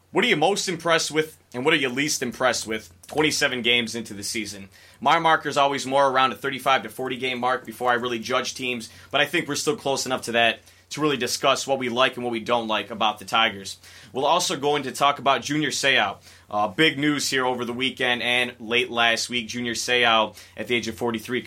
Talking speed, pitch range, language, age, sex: 240 wpm, 115-140 Hz, English, 20-39, male